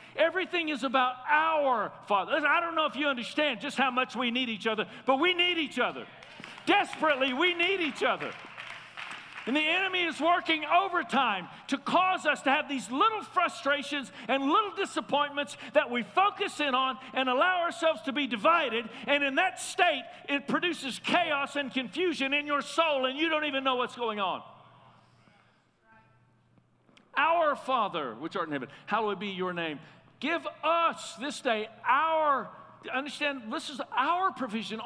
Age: 50-69